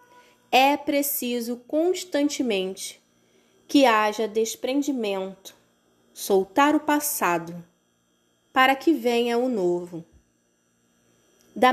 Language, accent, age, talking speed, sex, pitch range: Portuguese, Brazilian, 20-39, 75 wpm, female, 190-280 Hz